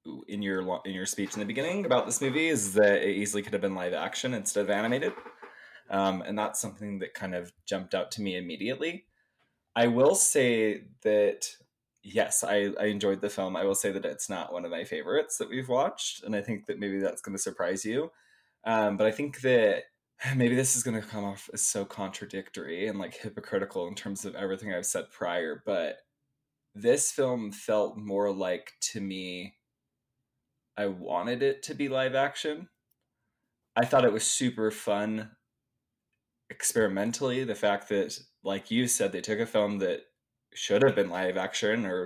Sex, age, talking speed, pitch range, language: male, 20-39, 190 wpm, 100-130 Hz, English